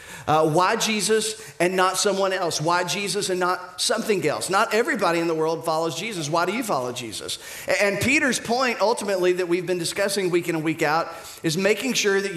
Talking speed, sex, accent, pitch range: 210 wpm, male, American, 155-195 Hz